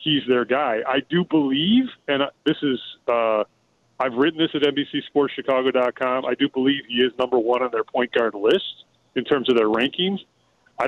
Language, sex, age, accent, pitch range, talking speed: English, male, 30-49, American, 120-140 Hz, 180 wpm